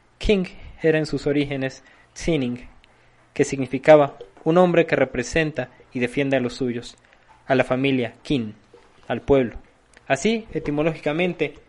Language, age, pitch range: Spanish, 20-39, 130-150 Hz